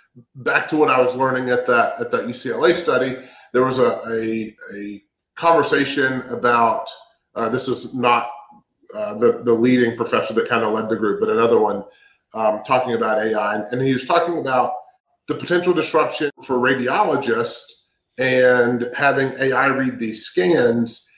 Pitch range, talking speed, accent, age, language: 115-145 Hz, 160 wpm, American, 30-49, English